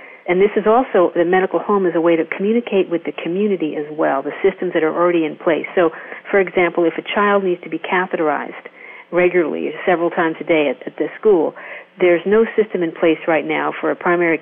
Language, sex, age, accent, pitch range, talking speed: English, female, 50-69, American, 160-195 Hz, 220 wpm